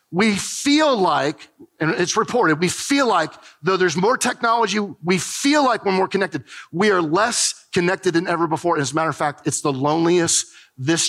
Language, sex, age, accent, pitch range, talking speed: English, male, 40-59, American, 140-195 Hz, 190 wpm